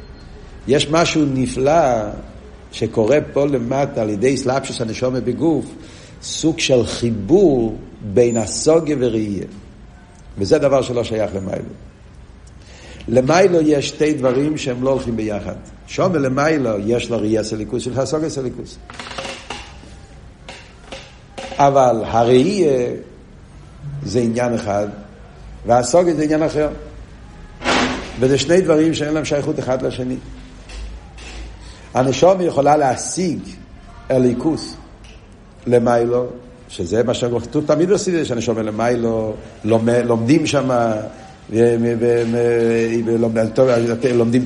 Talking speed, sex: 95 wpm, male